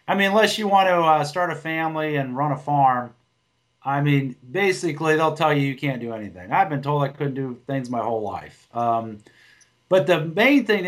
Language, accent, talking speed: English, American, 215 wpm